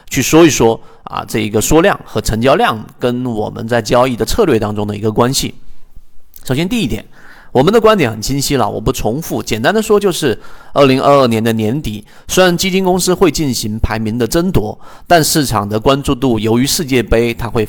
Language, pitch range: Chinese, 110-155 Hz